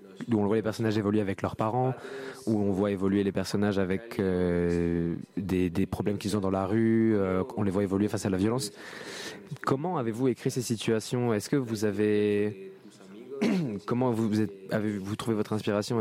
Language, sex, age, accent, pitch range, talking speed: French, male, 20-39, French, 100-115 Hz, 185 wpm